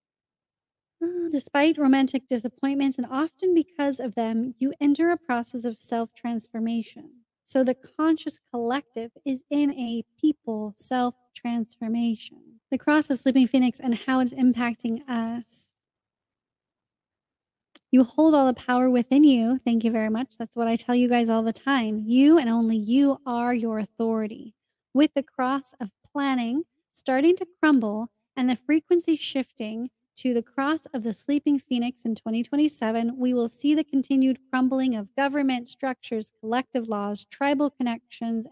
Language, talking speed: English, 145 wpm